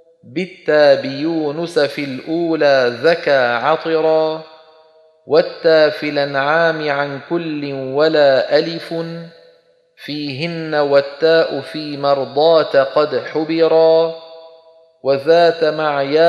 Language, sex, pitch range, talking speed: Arabic, male, 145-165 Hz, 75 wpm